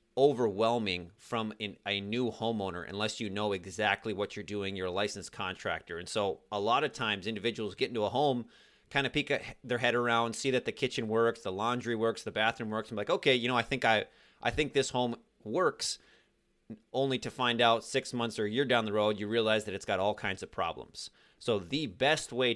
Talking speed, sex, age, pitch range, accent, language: 220 wpm, male, 30-49, 105-120 Hz, American, English